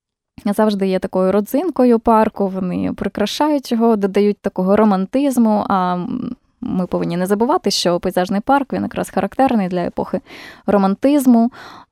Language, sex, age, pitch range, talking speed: Ukrainian, female, 20-39, 185-235 Hz, 125 wpm